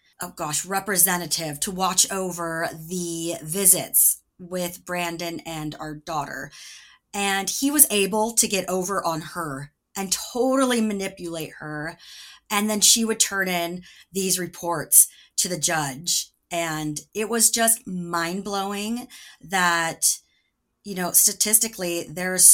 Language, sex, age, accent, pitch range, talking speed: English, female, 30-49, American, 165-200 Hz, 125 wpm